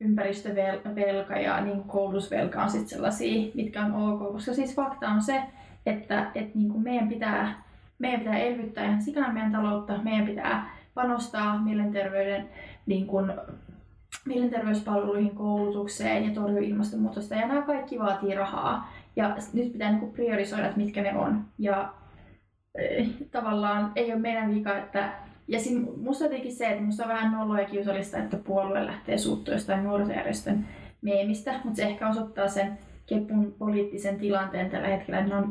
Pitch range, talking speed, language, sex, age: 200-220 Hz, 135 wpm, Finnish, female, 20-39